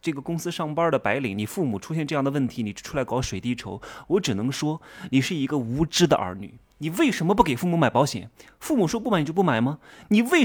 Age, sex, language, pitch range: 20-39, male, Chinese, 120-180 Hz